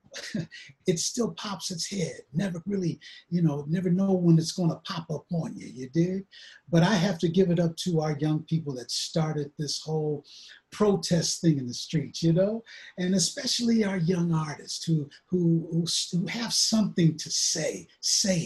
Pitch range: 150-195 Hz